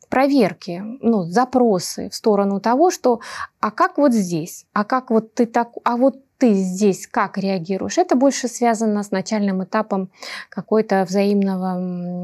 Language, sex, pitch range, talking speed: Russian, female, 195-240 Hz, 125 wpm